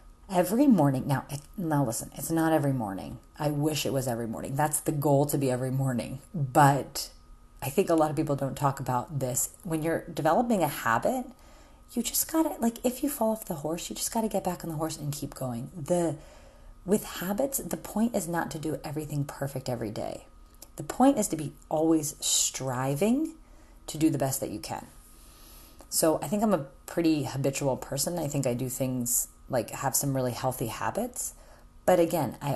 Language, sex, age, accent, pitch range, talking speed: English, female, 30-49, American, 130-175 Hz, 205 wpm